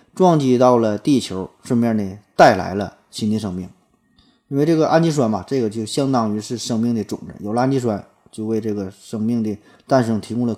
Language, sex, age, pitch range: Chinese, male, 20-39, 105-130 Hz